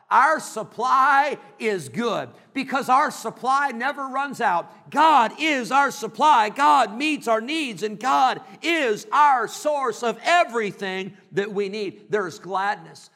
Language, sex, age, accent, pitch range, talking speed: English, male, 50-69, American, 155-225 Hz, 140 wpm